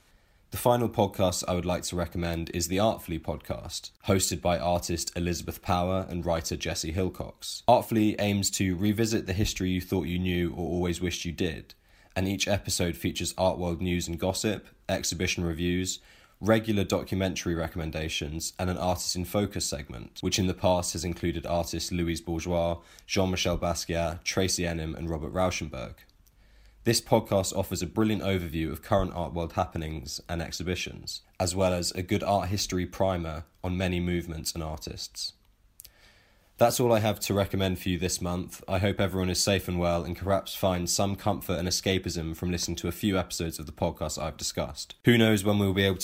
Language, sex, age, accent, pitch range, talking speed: English, male, 20-39, British, 85-95 Hz, 180 wpm